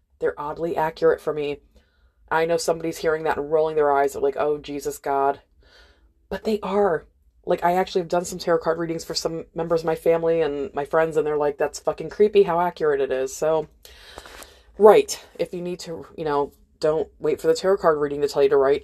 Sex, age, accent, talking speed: female, 20-39, American, 225 wpm